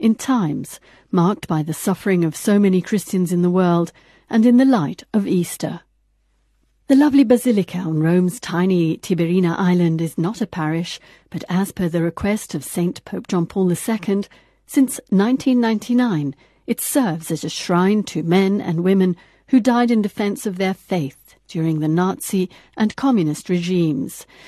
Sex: female